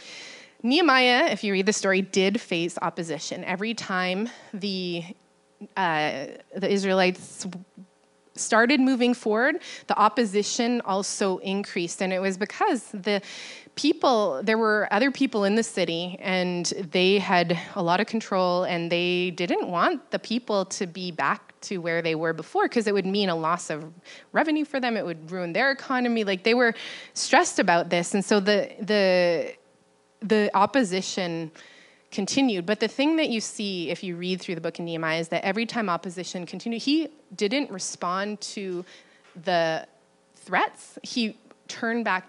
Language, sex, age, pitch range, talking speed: English, female, 20-39, 180-230 Hz, 160 wpm